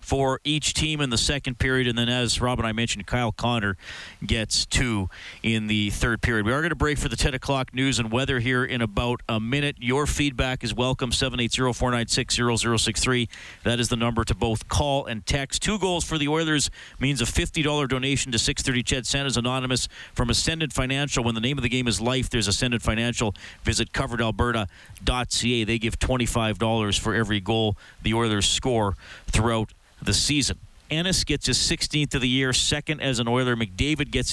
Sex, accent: male, American